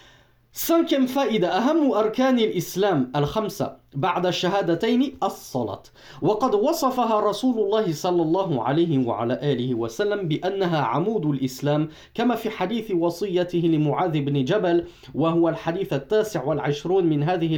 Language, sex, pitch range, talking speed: French, male, 150-240 Hz, 120 wpm